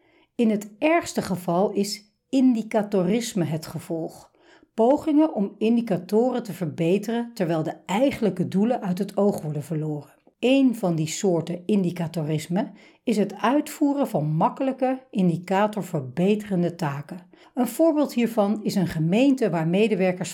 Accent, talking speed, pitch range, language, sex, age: Dutch, 125 wpm, 170-225 Hz, Dutch, female, 60-79